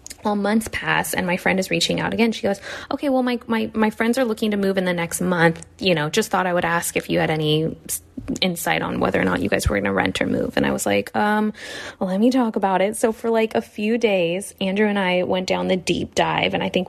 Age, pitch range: 20-39, 170-225 Hz